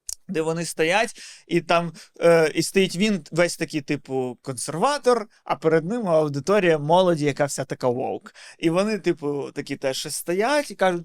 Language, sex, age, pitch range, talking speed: Ukrainian, male, 30-49, 145-200 Hz, 165 wpm